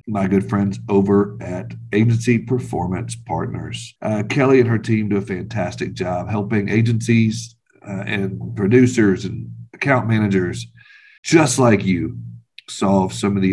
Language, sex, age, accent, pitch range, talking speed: English, male, 50-69, American, 100-120 Hz, 140 wpm